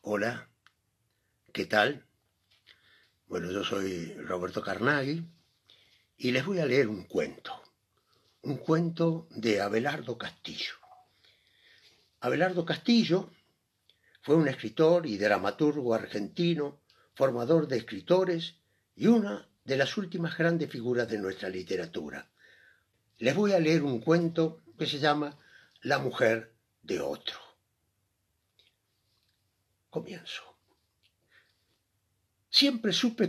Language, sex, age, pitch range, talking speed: Spanish, male, 60-79, 110-170 Hz, 105 wpm